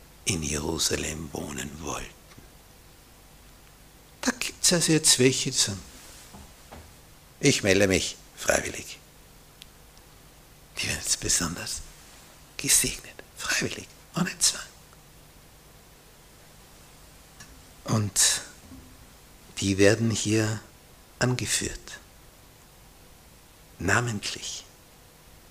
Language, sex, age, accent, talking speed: German, male, 60-79, Austrian, 70 wpm